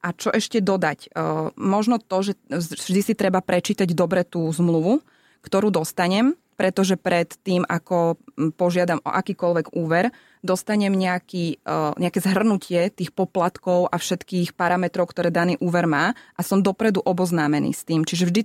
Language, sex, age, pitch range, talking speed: Slovak, female, 20-39, 165-190 Hz, 145 wpm